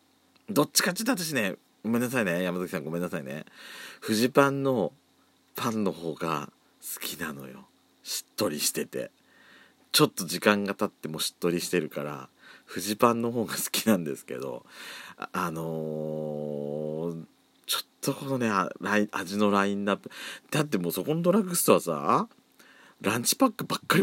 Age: 40-59